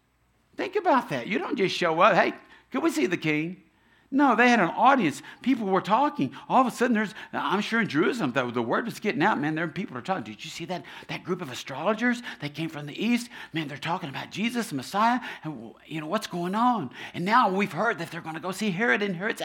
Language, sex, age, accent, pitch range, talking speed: English, male, 50-69, American, 155-220 Hz, 250 wpm